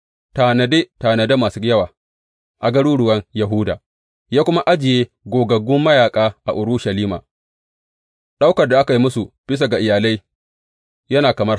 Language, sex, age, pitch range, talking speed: English, male, 30-49, 90-125 Hz, 105 wpm